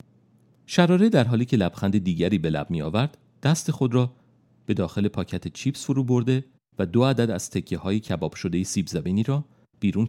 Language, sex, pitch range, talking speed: Persian, male, 105-155 Hz, 185 wpm